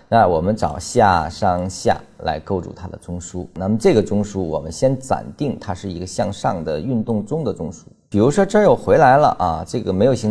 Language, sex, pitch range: Chinese, male, 85-115 Hz